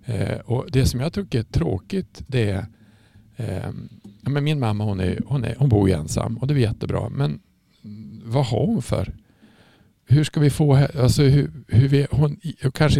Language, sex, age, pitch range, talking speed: Swedish, male, 50-69, 105-135 Hz, 190 wpm